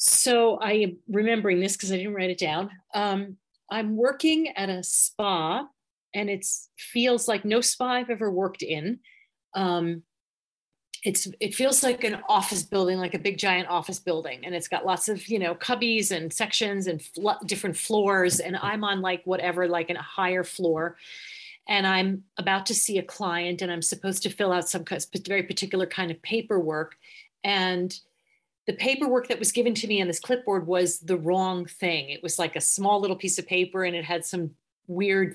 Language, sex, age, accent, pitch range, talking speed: English, female, 40-59, American, 175-210 Hz, 190 wpm